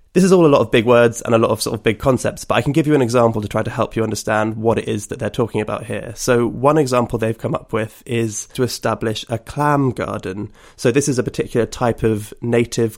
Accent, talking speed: British, 270 wpm